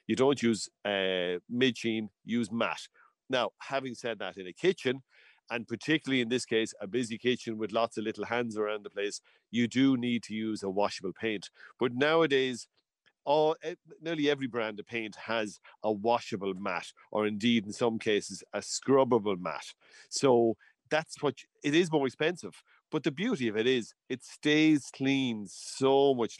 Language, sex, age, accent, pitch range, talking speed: English, male, 40-59, Irish, 110-140 Hz, 175 wpm